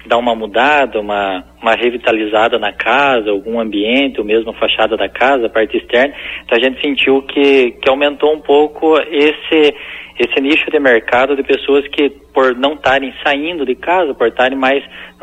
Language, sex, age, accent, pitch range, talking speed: Portuguese, male, 20-39, Brazilian, 120-145 Hz, 180 wpm